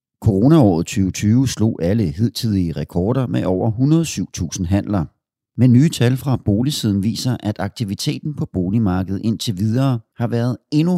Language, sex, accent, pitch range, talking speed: Danish, male, native, 90-125 Hz, 135 wpm